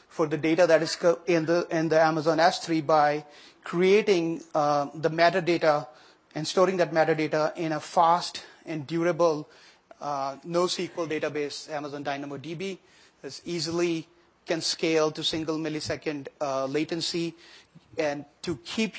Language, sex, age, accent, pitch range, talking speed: English, male, 30-49, Indian, 155-175 Hz, 135 wpm